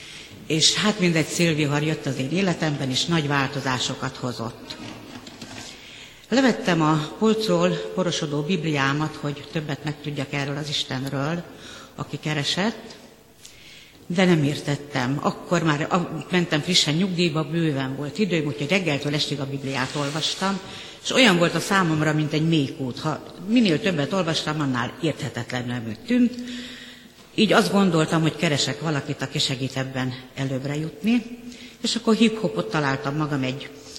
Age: 60-79